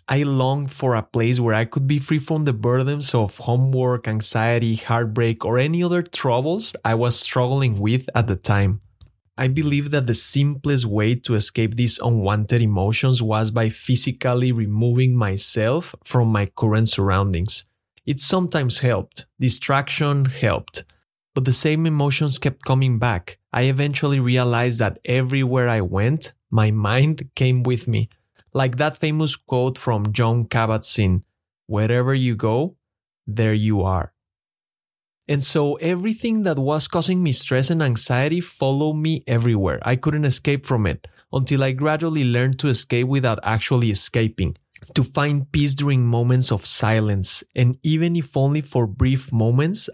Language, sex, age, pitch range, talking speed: English, male, 30-49, 110-140 Hz, 150 wpm